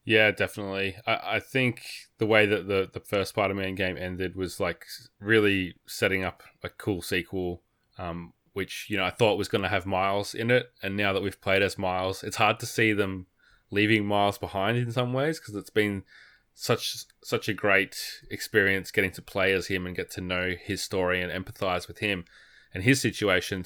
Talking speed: 200 wpm